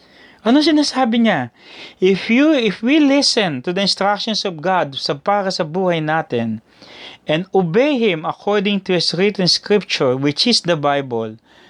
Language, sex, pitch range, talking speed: English, male, 160-220 Hz, 155 wpm